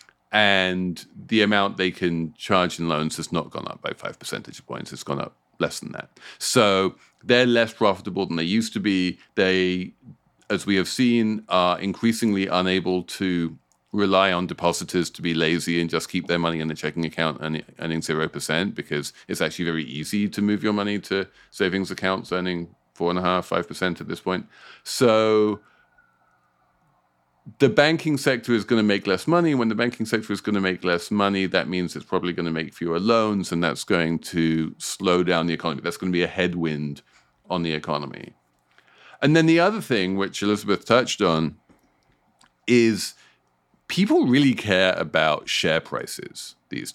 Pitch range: 80-105 Hz